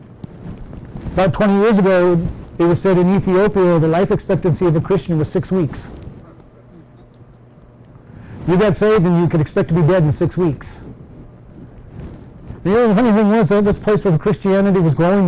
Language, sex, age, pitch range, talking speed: English, male, 50-69, 140-180 Hz, 175 wpm